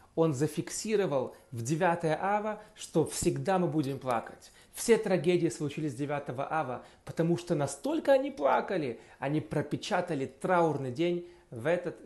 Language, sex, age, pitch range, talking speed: Russian, male, 30-49, 135-180 Hz, 130 wpm